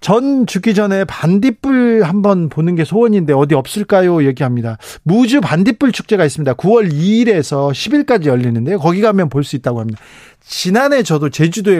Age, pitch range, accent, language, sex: 40-59, 140-200 Hz, native, Korean, male